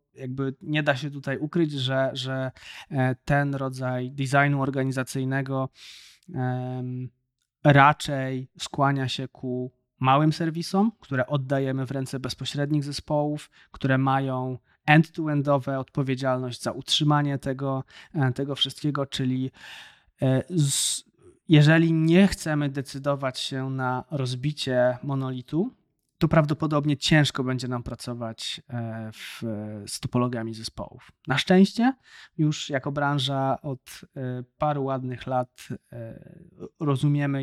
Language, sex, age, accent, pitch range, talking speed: Polish, male, 20-39, native, 125-150 Hz, 100 wpm